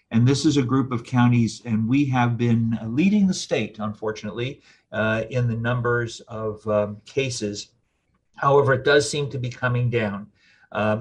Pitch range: 110-130 Hz